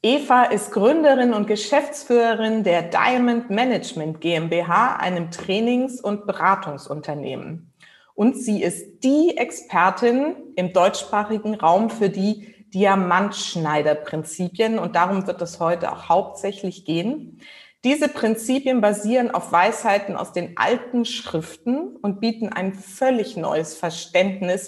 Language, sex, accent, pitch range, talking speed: German, female, German, 180-230 Hz, 115 wpm